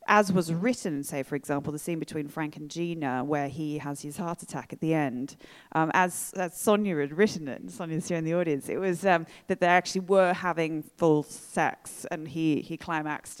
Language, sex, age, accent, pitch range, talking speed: English, female, 20-39, British, 150-190 Hz, 215 wpm